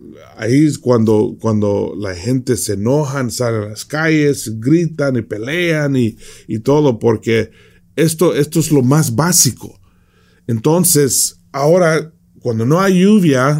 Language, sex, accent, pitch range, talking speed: English, male, Mexican, 105-145 Hz, 135 wpm